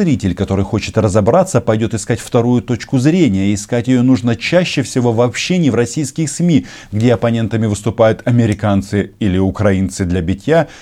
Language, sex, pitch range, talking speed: Russian, male, 100-145 Hz, 150 wpm